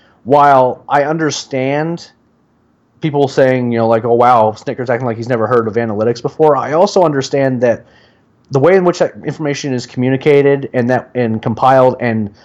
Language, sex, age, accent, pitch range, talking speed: English, male, 30-49, American, 115-140 Hz, 175 wpm